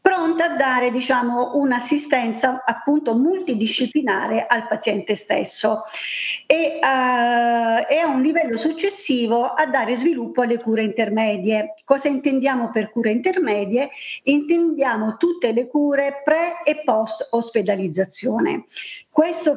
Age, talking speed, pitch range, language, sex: 50-69, 115 wpm, 220-290 Hz, Italian, female